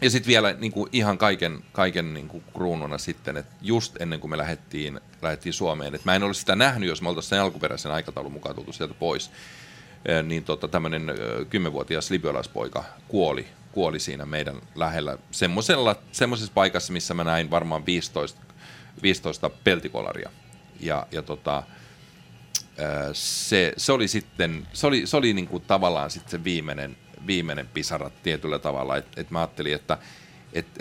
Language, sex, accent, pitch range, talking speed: Finnish, male, native, 80-100 Hz, 155 wpm